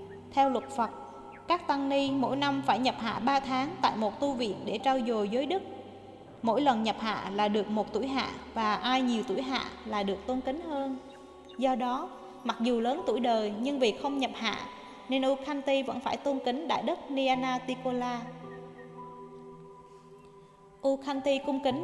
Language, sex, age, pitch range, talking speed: Vietnamese, female, 20-39, 225-280 Hz, 180 wpm